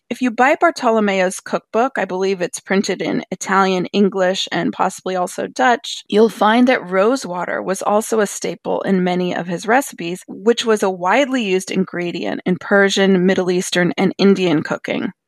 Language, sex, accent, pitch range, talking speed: English, female, American, 185-235 Hz, 165 wpm